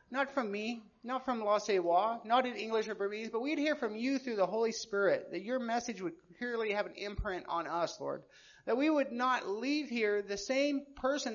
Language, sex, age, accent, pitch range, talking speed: English, male, 40-59, American, 195-245 Hz, 215 wpm